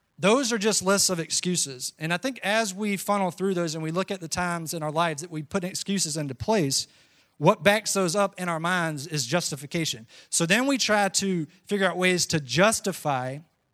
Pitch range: 155-190 Hz